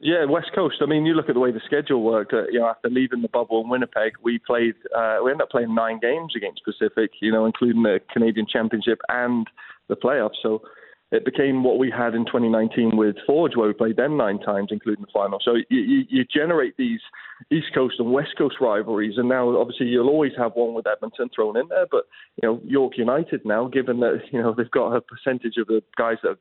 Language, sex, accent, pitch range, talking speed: English, male, British, 110-130 Hz, 235 wpm